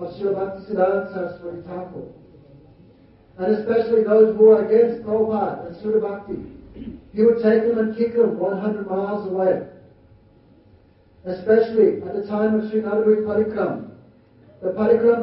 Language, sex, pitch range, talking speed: Hindi, male, 195-220 Hz, 140 wpm